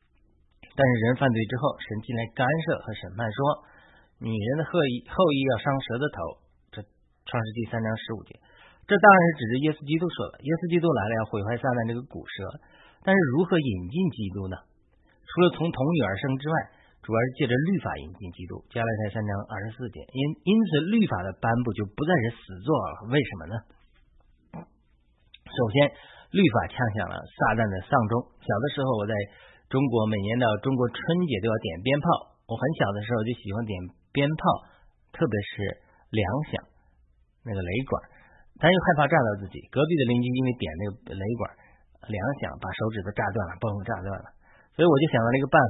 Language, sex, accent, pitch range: Chinese, male, native, 105-140 Hz